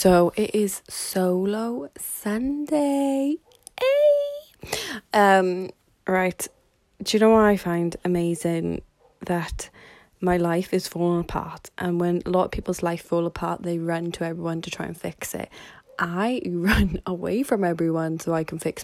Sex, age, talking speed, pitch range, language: female, 20-39, 155 wpm, 165-200 Hz, English